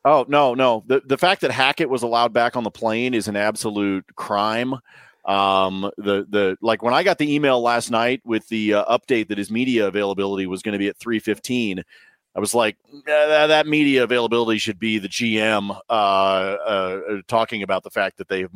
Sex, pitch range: male, 105-125 Hz